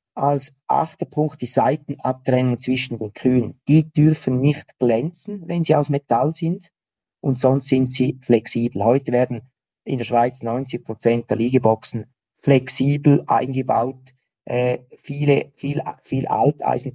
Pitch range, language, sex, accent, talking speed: 120-140 Hz, German, male, Austrian, 135 wpm